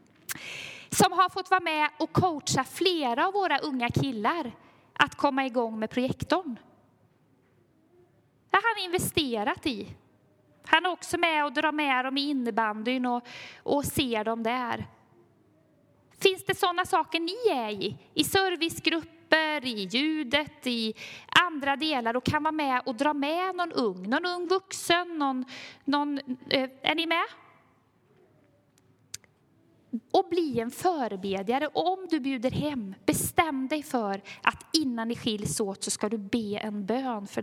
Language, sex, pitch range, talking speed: Swedish, female, 225-325 Hz, 145 wpm